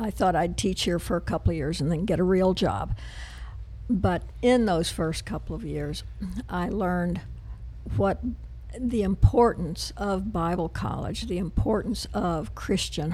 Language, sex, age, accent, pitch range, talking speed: English, female, 60-79, American, 155-205 Hz, 160 wpm